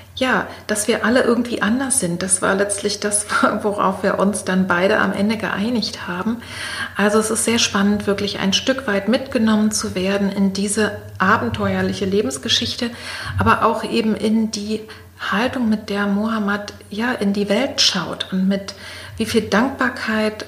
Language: German